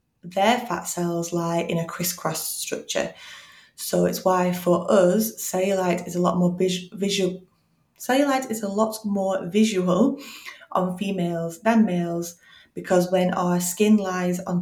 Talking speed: 145 wpm